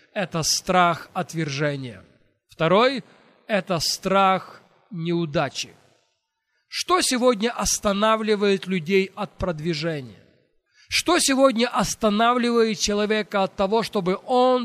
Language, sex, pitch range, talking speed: Russian, male, 175-220 Hz, 85 wpm